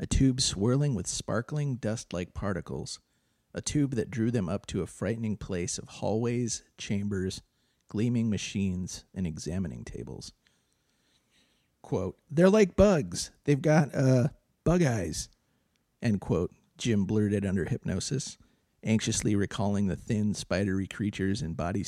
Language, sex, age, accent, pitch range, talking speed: English, male, 40-59, American, 95-120 Hz, 130 wpm